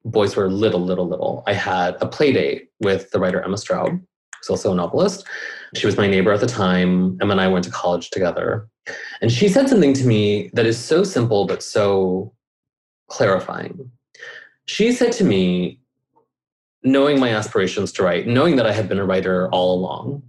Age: 20-39